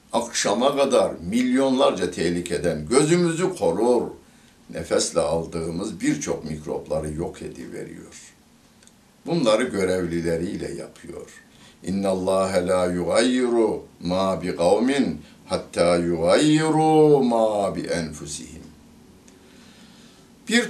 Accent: native